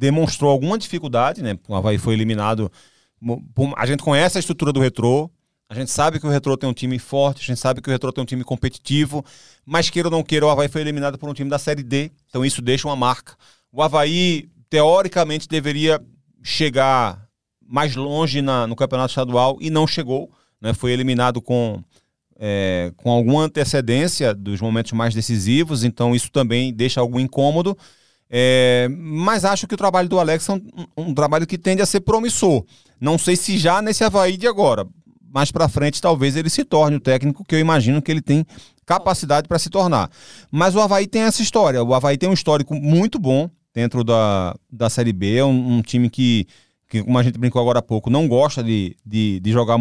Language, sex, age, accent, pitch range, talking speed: Portuguese, male, 30-49, Brazilian, 120-160 Hz, 200 wpm